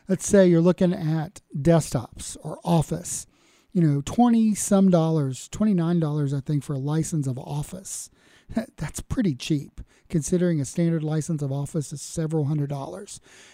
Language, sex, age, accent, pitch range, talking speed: English, male, 40-59, American, 140-175 Hz, 150 wpm